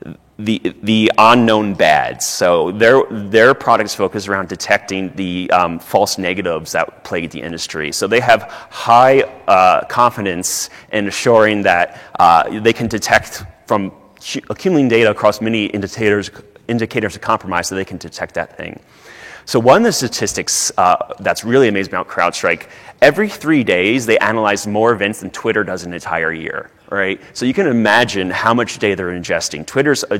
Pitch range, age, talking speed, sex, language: 95-115 Hz, 30-49, 165 wpm, male, English